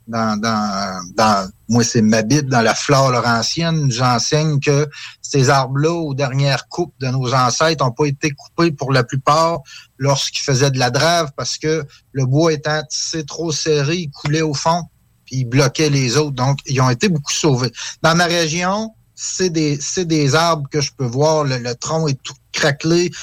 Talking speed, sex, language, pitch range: 190 wpm, male, French, 125-155 Hz